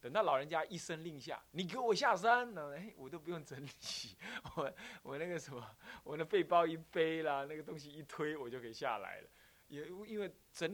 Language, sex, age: Chinese, male, 20-39